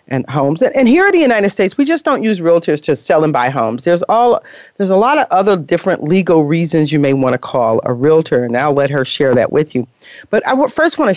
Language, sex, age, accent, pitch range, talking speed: English, female, 40-59, American, 145-200 Hz, 270 wpm